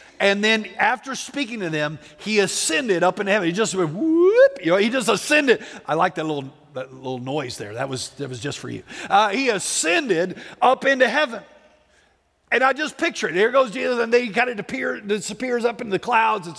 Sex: male